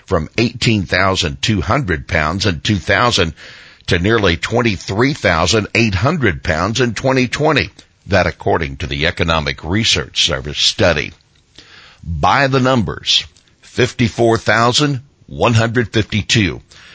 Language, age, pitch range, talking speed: English, 60-79, 85-115 Hz, 80 wpm